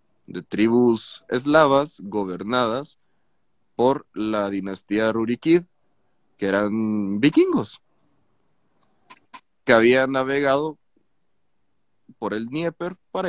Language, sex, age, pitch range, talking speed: Spanish, male, 30-49, 105-145 Hz, 80 wpm